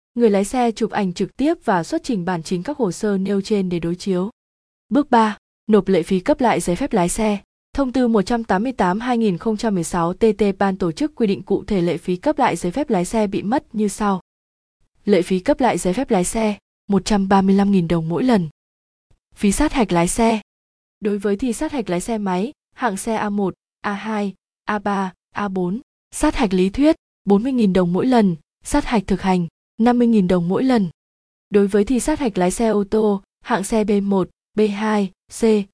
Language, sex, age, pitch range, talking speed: Vietnamese, female, 20-39, 190-230 Hz, 190 wpm